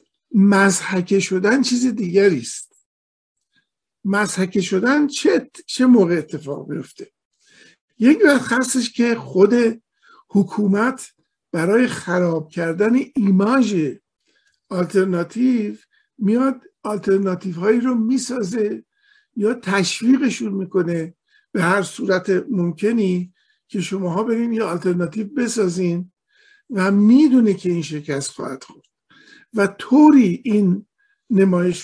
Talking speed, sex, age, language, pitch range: 100 wpm, male, 50-69, Persian, 185-255 Hz